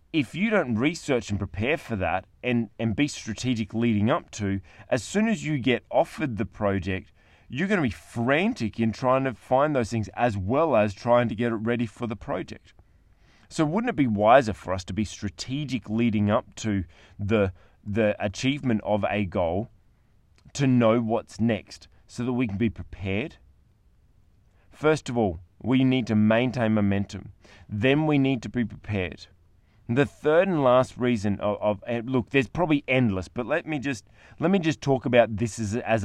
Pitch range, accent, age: 100-130 Hz, Australian, 20-39